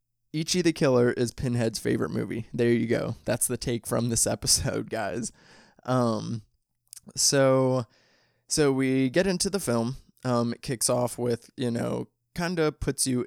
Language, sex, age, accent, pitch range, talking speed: English, male, 20-39, American, 110-125 Hz, 165 wpm